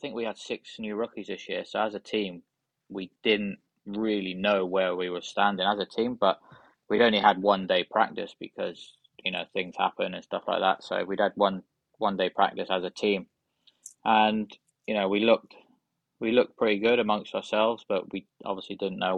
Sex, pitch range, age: male, 95-110 Hz, 20-39